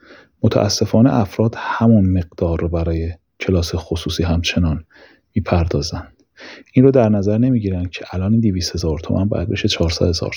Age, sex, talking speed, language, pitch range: 30-49, male, 145 wpm, Persian, 90-110 Hz